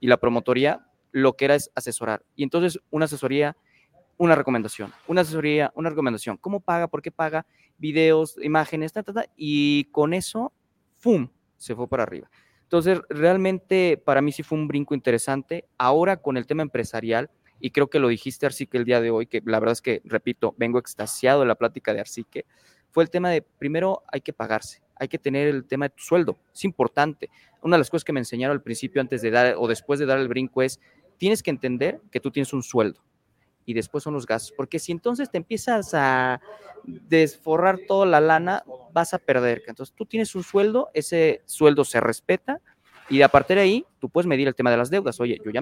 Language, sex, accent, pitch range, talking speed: Spanish, male, Mexican, 125-170 Hz, 210 wpm